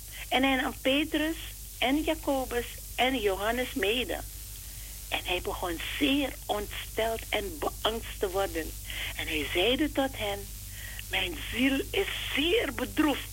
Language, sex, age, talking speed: Dutch, female, 60-79, 125 wpm